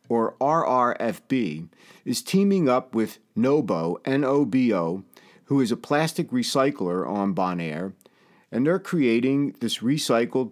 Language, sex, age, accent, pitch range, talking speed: English, male, 50-69, American, 115-170 Hz, 115 wpm